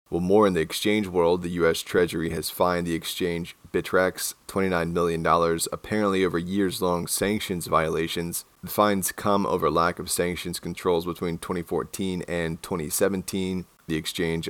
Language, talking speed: English, 145 wpm